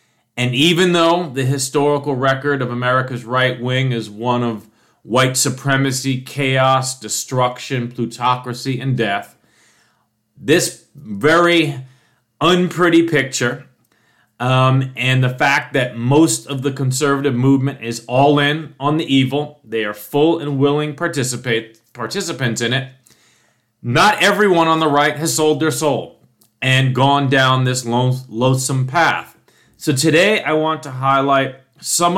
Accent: American